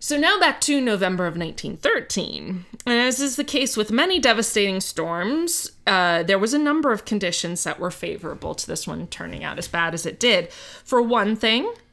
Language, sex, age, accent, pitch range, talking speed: English, female, 20-39, American, 180-250 Hz, 195 wpm